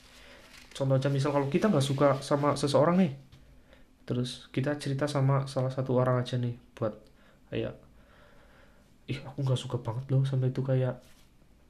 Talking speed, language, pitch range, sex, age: 150 wpm, Indonesian, 125-155 Hz, male, 20-39